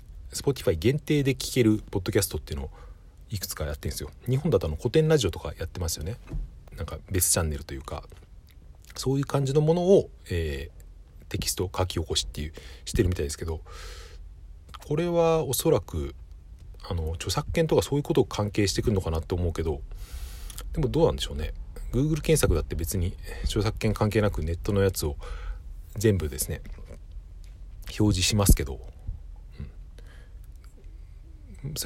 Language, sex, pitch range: Japanese, male, 80-105 Hz